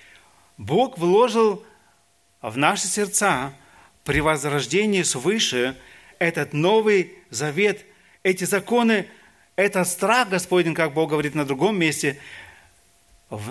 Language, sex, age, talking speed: Russian, male, 40-59, 100 wpm